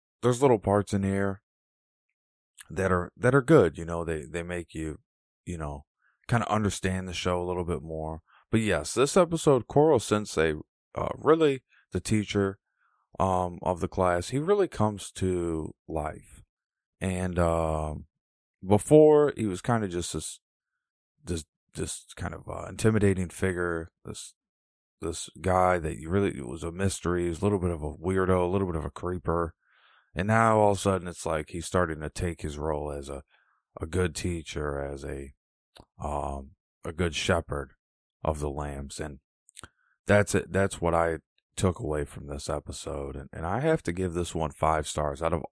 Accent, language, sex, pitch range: American, English, male, 75-100 Hz